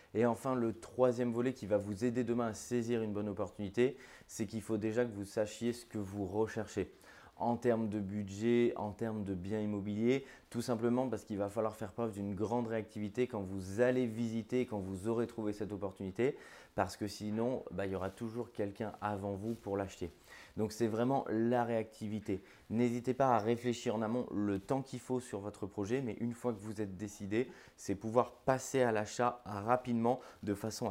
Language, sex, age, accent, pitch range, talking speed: French, male, 20-39, French, 105-120 Hz, 200 wpm